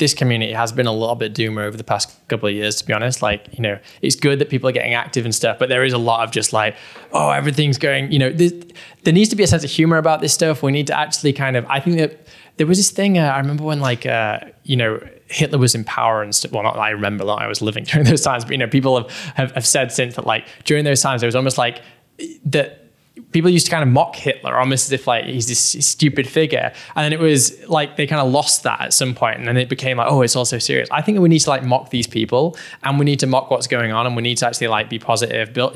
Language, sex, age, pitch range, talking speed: English, male, 10-29, 120-150 Hz, 295 wpm